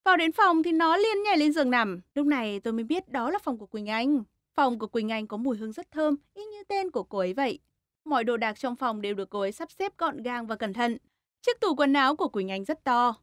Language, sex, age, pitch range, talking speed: Vietnamese, female, 20-39, 225-310 Hz, 280 wpm